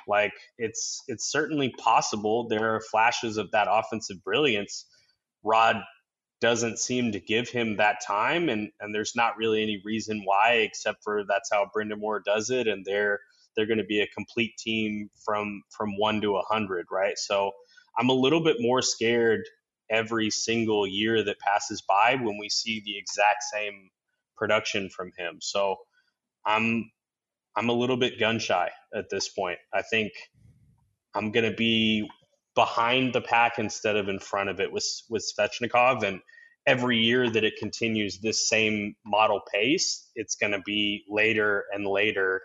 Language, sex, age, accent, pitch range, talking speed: English, male, 20-39, American, 105-120 Hz, 170 wpm